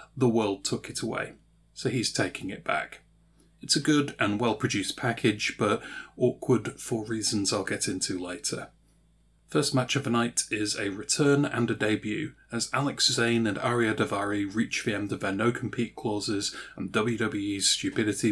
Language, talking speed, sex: English, 165 wpm, male